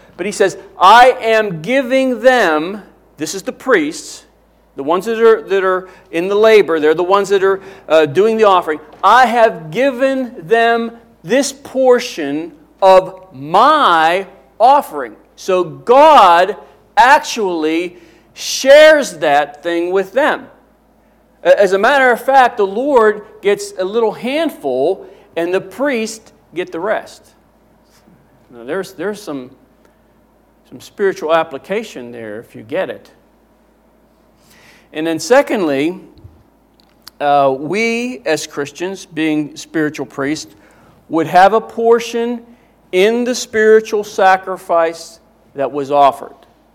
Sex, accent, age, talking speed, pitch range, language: male, American, 40-59, 125 wpm, 165-235 Hz, English